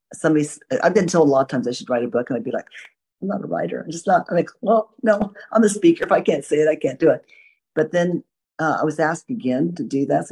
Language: English